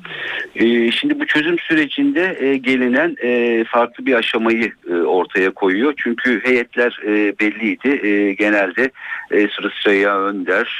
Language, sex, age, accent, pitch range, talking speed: Turkish, male, 60-79, native, 90-135 Hz, 130 wpm